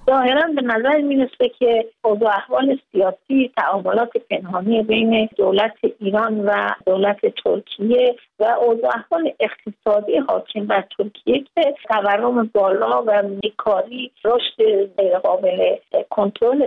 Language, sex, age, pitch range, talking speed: Persian, female, 50-69, 205-275 Hz, 110 wpm